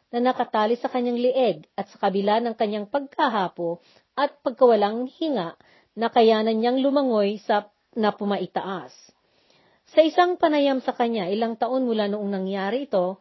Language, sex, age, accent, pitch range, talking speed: Filipino, female, 40-59, native, 195-265 Hz, 135 wpm